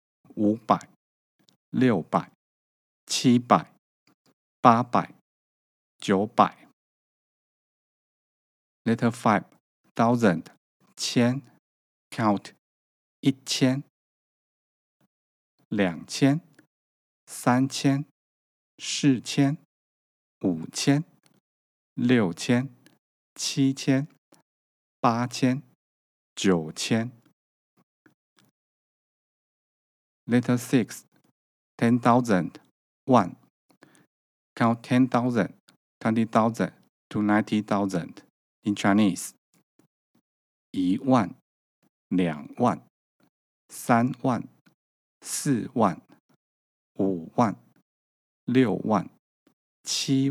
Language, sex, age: Chinese, male, 50-69